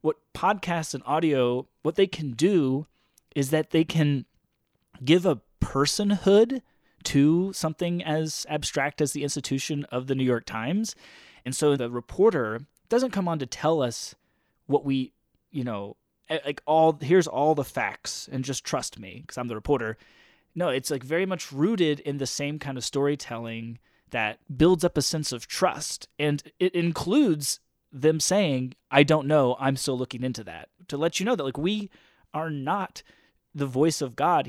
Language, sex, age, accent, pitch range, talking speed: Dutch, male, 30-49, American, 130-165 Hz, 175 wpm